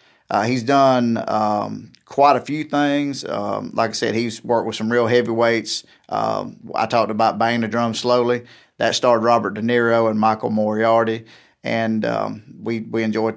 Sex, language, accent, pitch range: male, English, American, 115-135 Hz